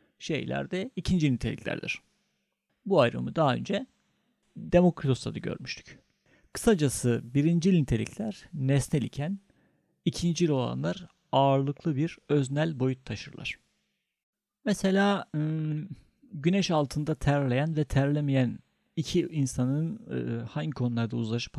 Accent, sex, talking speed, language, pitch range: native, male, 95 wpm, Turkish, 125-180 Hz